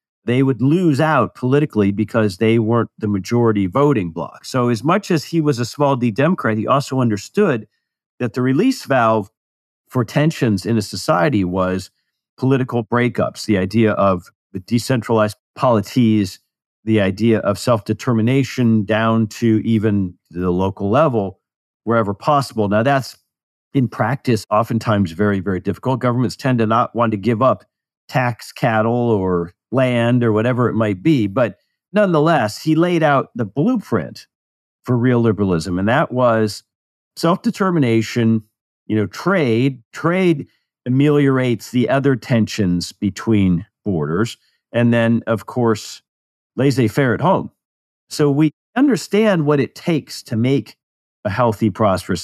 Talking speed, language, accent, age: 140 wpm, English, American, 50-69